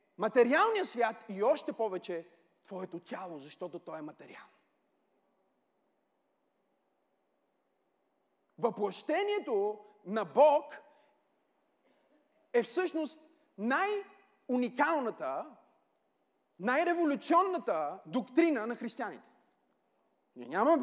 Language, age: Bulgarian, 40-59